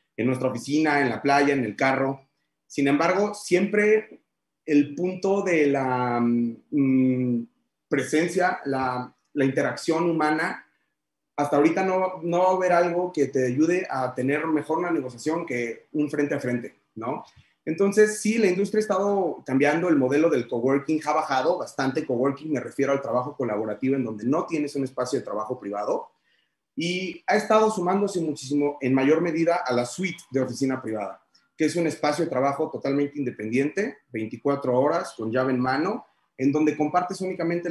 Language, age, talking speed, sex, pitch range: Spanish, 30-49, 165 wpm, male, 130-160 Hz